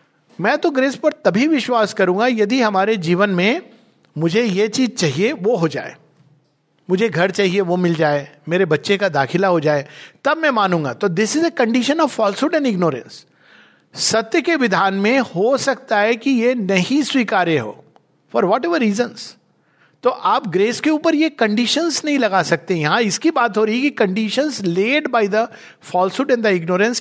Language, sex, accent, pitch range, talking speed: Hindi, male, native, 180-245 Hz, 180 wpm